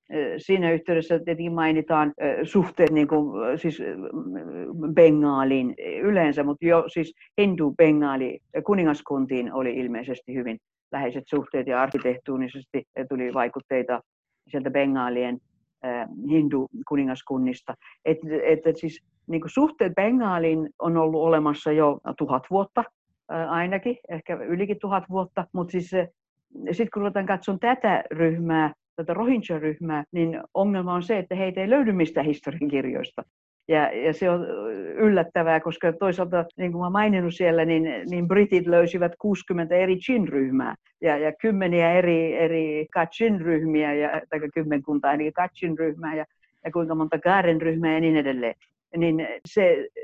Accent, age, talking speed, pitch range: native, 60-79, 125 wpm, 150-185 Hz